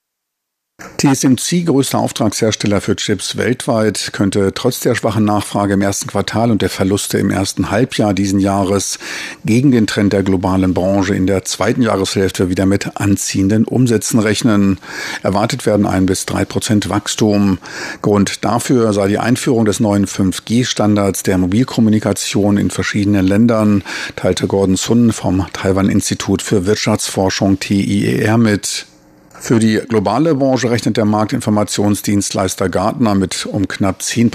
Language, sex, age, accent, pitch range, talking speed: German, male, 50-69, German, 95-110 Hz, 135 wpm